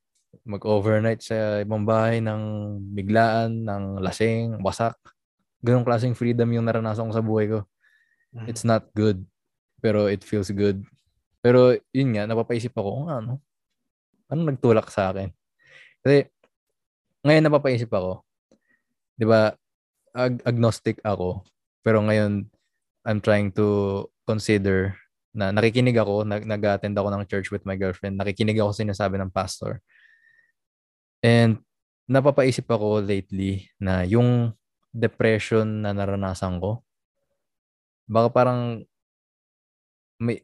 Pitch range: 100-125 Hz